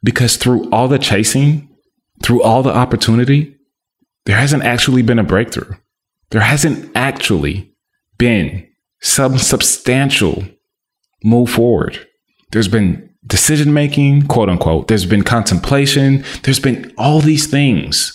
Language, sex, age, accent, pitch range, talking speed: English, male, 20-39, American, 105-135 Hz, 120 wpm